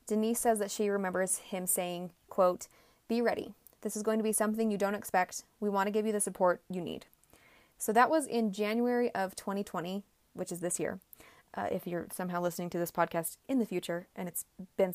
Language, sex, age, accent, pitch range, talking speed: English, female, 20-39, American, 185-225 Hz, 215 wpm